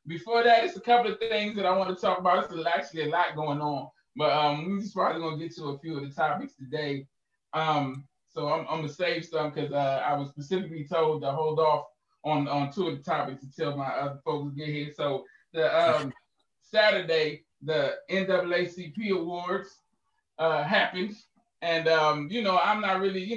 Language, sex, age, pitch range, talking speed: English, male, 20-39, 145-180 Hz, 205 wpm